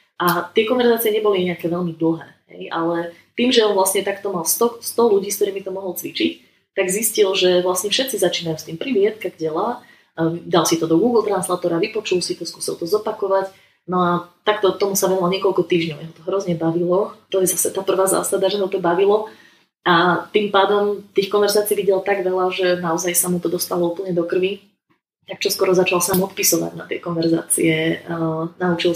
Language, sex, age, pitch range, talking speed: Slovak, female, 20-39, 175-200 Hz, 195 wpm